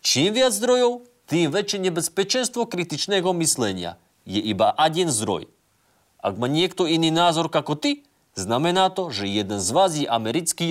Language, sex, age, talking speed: Slovak, male, 40-59, 150 wpm